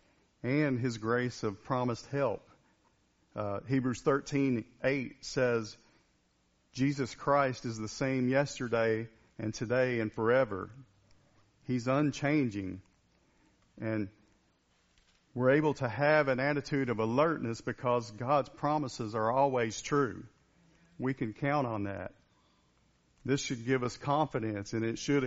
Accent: American